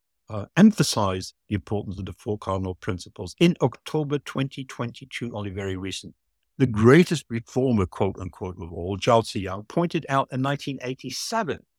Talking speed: 135 wpm